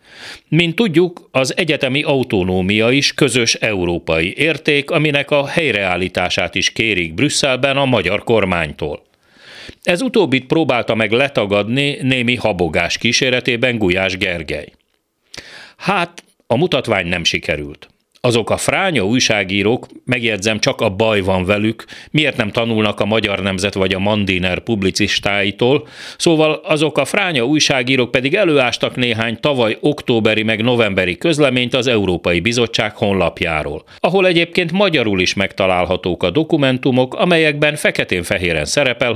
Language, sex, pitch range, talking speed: Hungarian, male, 100-140 Hz, 125 wpm